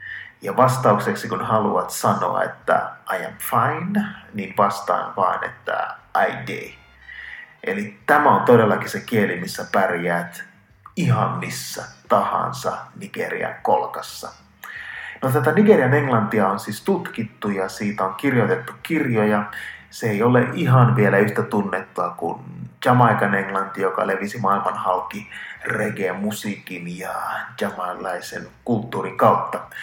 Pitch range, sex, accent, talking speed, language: 100-130 Hz, male, native, 120 wpm, Finnish